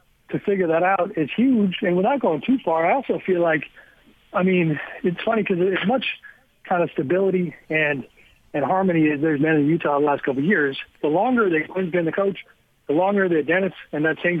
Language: English